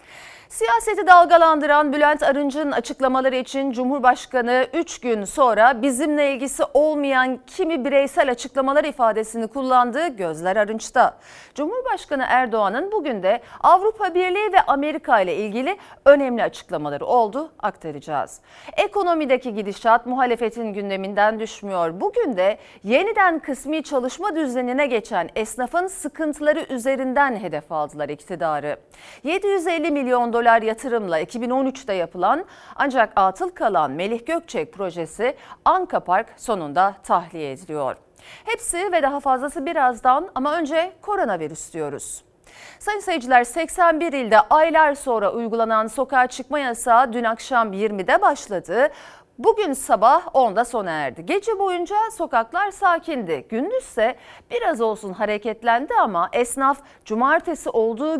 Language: Turkish